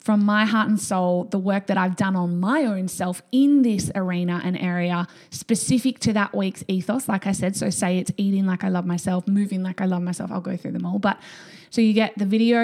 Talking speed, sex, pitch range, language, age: 240 wpm, female, 190-225 Hz, English, 20-39